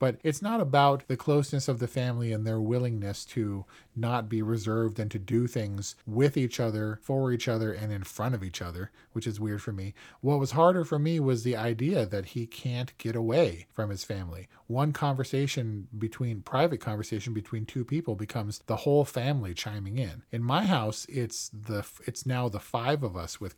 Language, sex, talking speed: English, male, 200 wpm